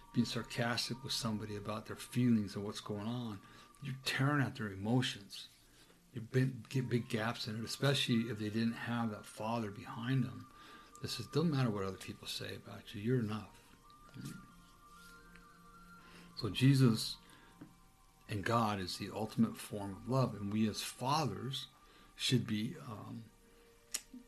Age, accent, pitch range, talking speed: 60-79, American, 105-130 Hz, 150 wpm